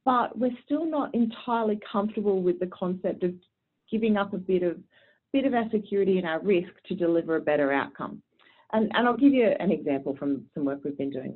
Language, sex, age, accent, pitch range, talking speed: English, female, 30-49, Australian, 150-205 Hz, 210 wpm